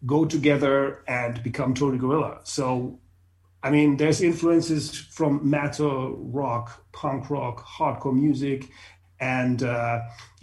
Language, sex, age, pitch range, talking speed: English, male, 30-49, 130-155 Hz, 115 wpm